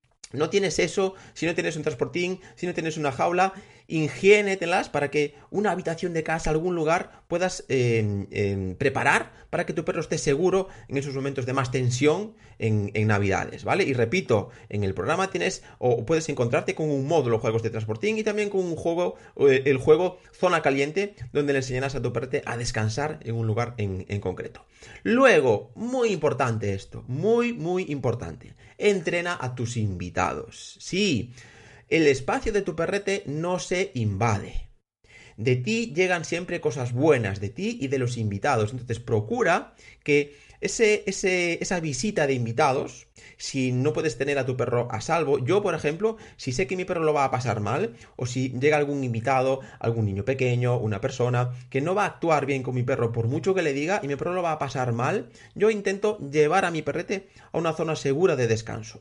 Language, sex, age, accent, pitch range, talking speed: Spanish, male, 30-49, Spanish, 115-175 Hz, 190 wpm